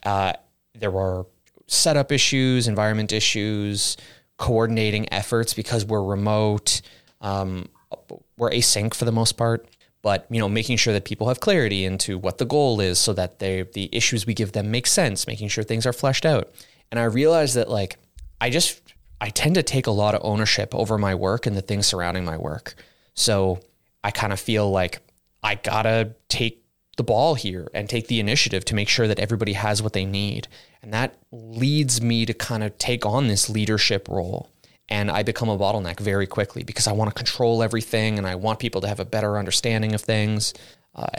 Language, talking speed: English, 200 wpm